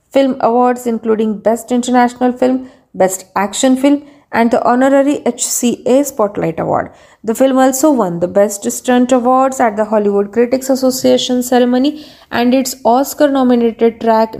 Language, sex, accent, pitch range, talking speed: Marathi, female, native, 205-255 Hz, 140 wpm